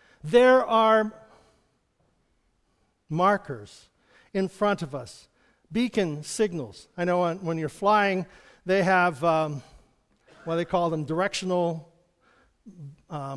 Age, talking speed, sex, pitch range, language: 50-69, 110 wpm, male, 170-215 Hz, English